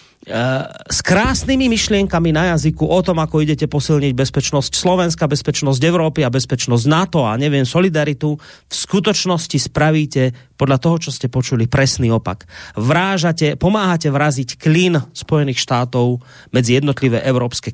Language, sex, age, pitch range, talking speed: Slovak, male, 30-49, 135-175 Hz, 130 wpm